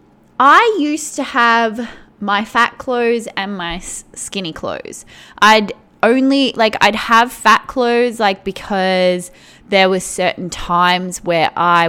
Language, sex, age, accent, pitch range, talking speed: English, female, 20-39, Australian, 180-230 Hz, 130 wpm